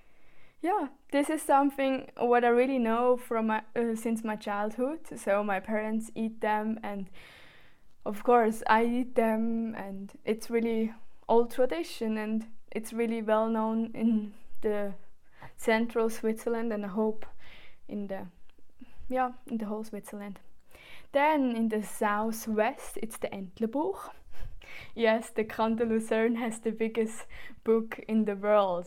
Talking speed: 140 wpm